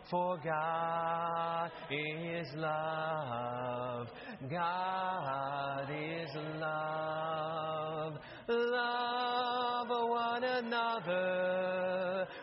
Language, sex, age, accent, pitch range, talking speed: English, male, 30-49, American, 155-205 Hz, 50 wpm